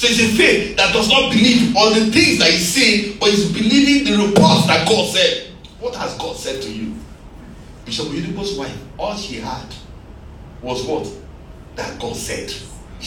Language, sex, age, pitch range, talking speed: English, male, 50-69, 145-220 Hz, 185 wpm